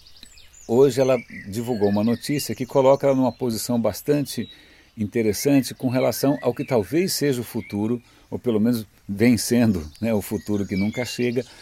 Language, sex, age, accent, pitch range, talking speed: Portuguese, male, 60-79, Brazilian, 105-150 Hz, 160 wpm